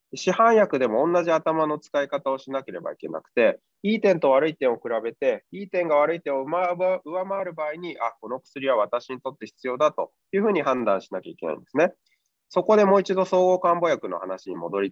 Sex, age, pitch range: male, 20-39, 140-185 Hz